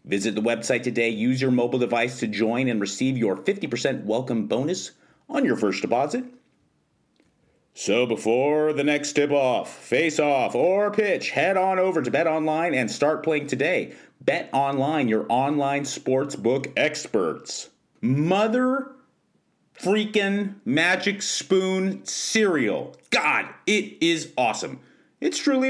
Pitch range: 115-165 Hz